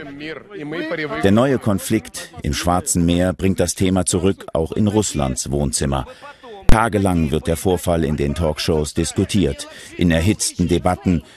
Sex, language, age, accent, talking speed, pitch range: male, German, 50-69, German, 130 wpm, 80-115 Hz